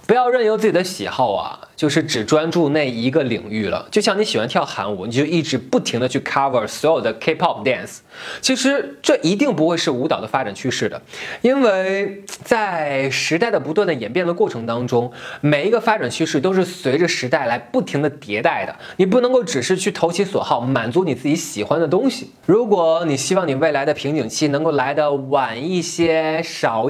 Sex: male